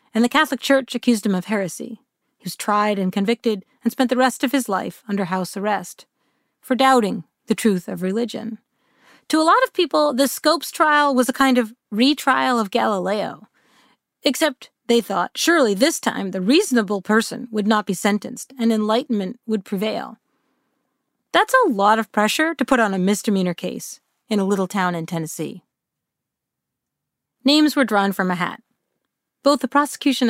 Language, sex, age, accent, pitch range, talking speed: English, female, 40-59, American, 215-285 Hz, 170 wpm